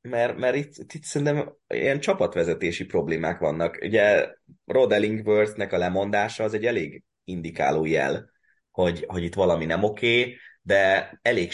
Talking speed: 140 wpm